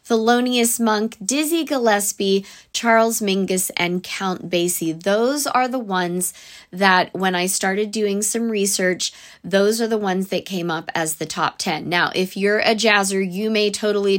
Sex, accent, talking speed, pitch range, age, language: female, American, 165 wpm, 180-220 Hz, 20-39, English